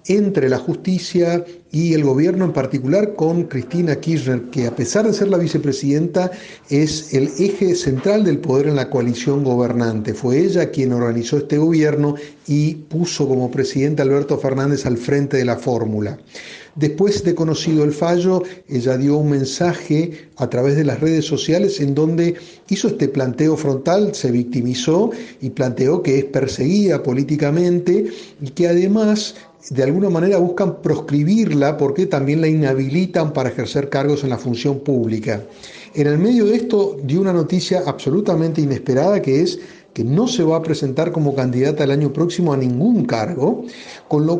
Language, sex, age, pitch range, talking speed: Spanish, male, 40-59, 135-185 Hz, 165 wpm